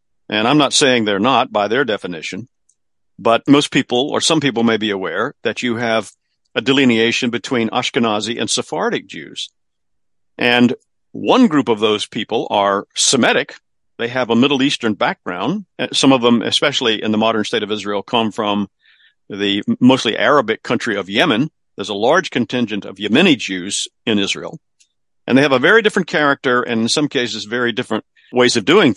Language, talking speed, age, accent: English, 175 wpm, 50-69, American